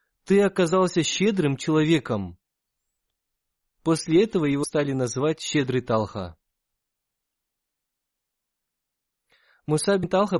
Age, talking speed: 20-39, 75 wpm